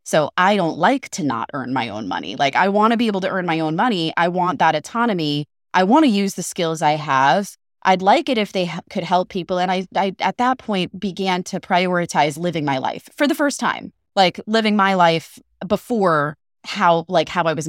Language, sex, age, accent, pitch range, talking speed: English, female, 20-39, American, 160-210 Hz, 230 wpm